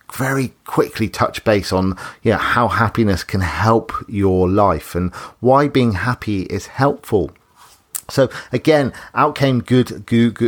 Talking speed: 145 wpm